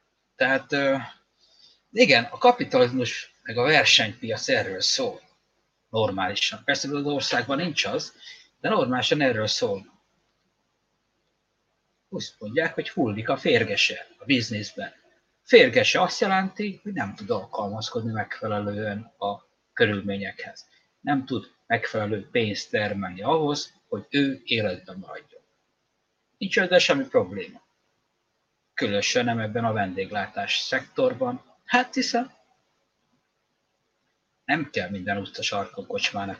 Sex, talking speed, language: male, 105 wpm, Hungarian